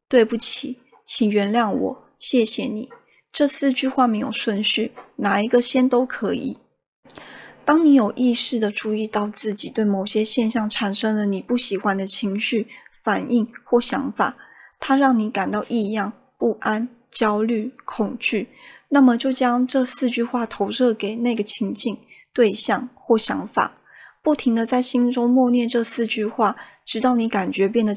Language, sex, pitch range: Chinese, female, 210-255 Hz